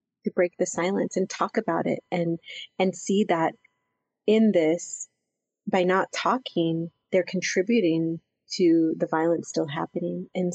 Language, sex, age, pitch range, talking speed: English, female, 30-49, 170-205 Hz, 135 wpm